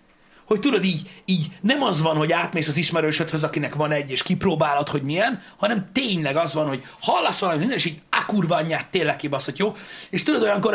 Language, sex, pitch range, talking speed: Hungarian, male, 150-205 Hz, 195 wpm